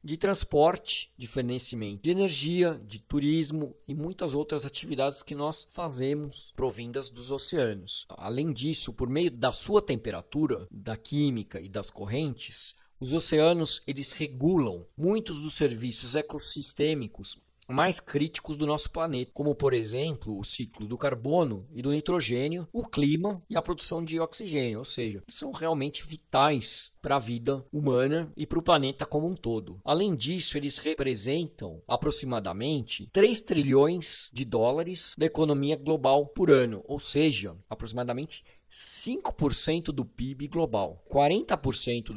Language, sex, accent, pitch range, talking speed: Portuguese, male, Brazilian, 120-155 Hz, 140 wpm